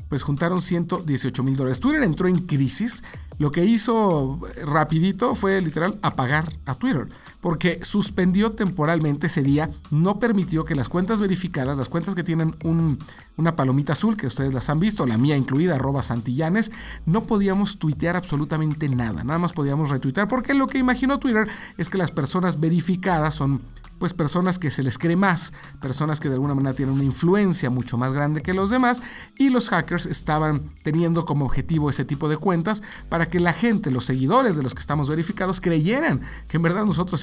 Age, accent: 50-69, Mexican